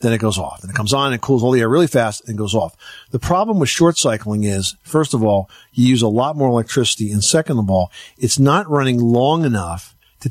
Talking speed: 250 wpm